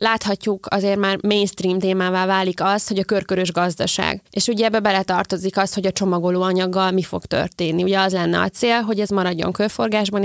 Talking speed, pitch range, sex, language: 180 wpm, 185-215 Hz, female, Hungarian